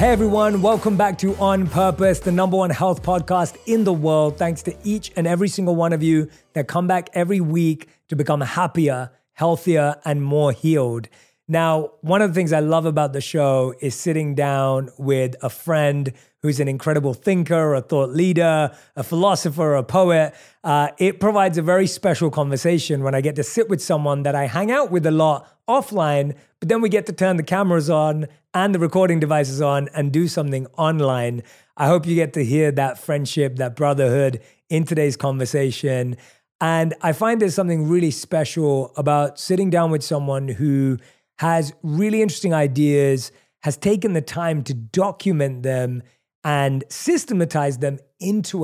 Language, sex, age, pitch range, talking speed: English, male, 30-49, 145-180 Hz, 180 wpm